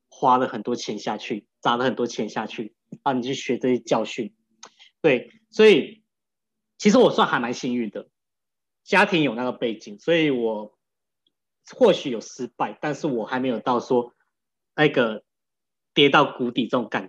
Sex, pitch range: male, 120-190 Hz